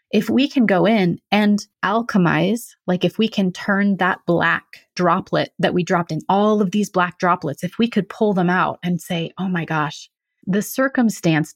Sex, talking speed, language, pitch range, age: female, 190 wpm, English, 170-210 Hz, 30-49